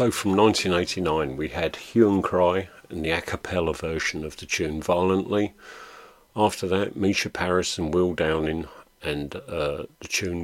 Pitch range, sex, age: 80-100 Hz, male, 50-69